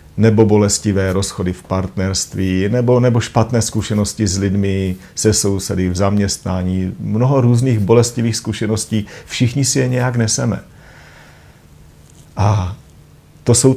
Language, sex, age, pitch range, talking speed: Czech, male, 40-59, 95-115 Hz, 120 wpm